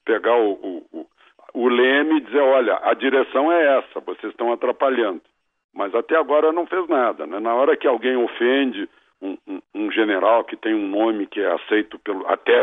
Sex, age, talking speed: male, 60-79, 195 wpm